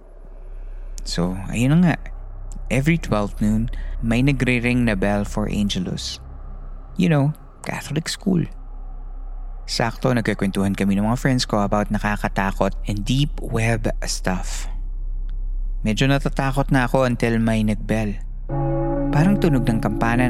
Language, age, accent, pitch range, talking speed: Filipino, 20-39, native, 80-130 Hz, 120 wpm